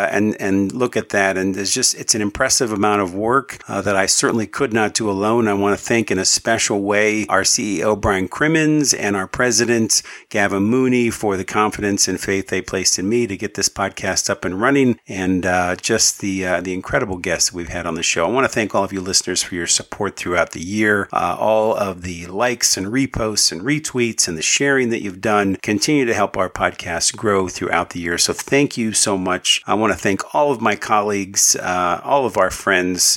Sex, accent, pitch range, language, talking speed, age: male, American, 95-120 Hz, English, 225 wpm, 50-69